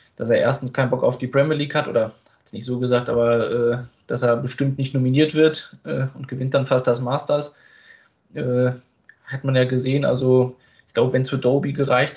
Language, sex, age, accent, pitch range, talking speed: German, male, 20-39, German, 125-140 Hz, 215 wpm